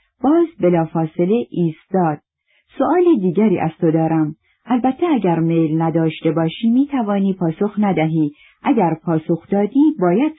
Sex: female